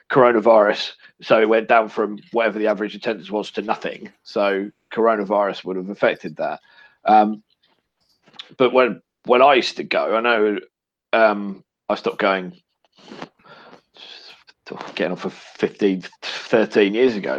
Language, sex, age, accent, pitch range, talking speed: English, male, 30-49, British, 95-110 Hz, 140 wpm